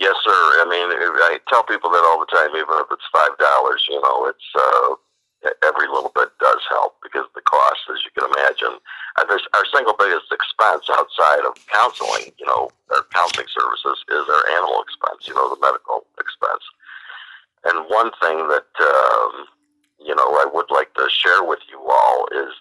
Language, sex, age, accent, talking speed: English, male, 50-69, American, 190 wpm